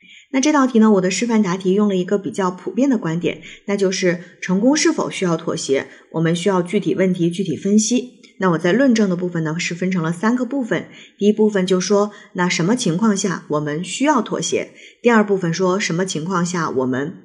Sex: female